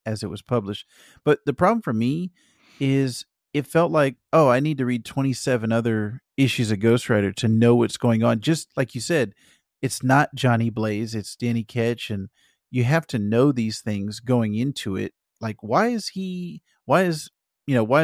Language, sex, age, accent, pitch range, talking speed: English, male, 40-59, American, 110-135 Hz, 195 wpm